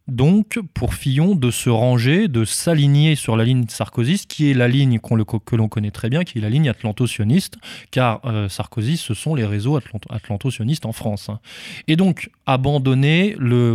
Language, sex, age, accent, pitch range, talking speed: French, male, 20-39, French, 110-145 Hz, 190 wpm